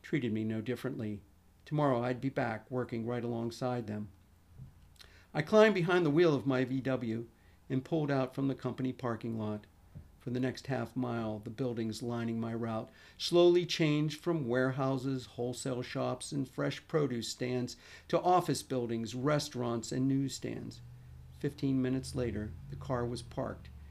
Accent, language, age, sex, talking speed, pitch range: American, English, 50-69, male, 155 wpm, 115-140 Hz